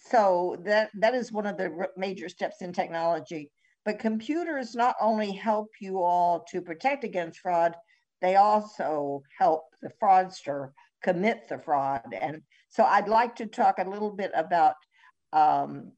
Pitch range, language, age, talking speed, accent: 170-225 Hz, English, 60-79, 155 wpm, American